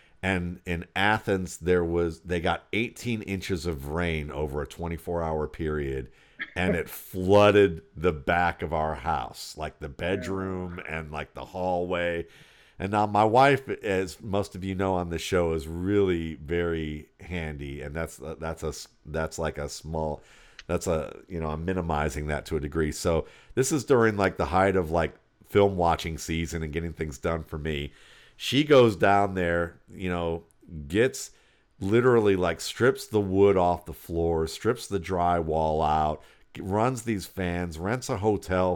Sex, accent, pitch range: male, American, 80-95 Hz